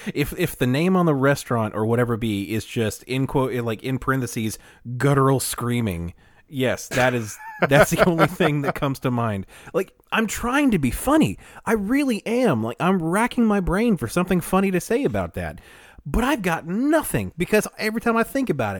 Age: 30-49